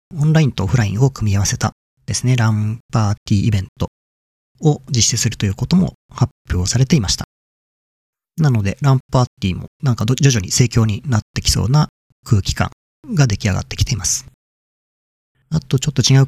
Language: Japanese